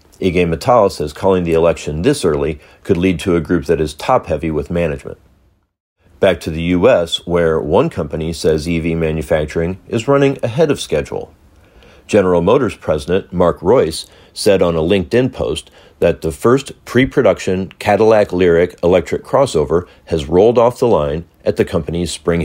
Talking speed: 160 wpm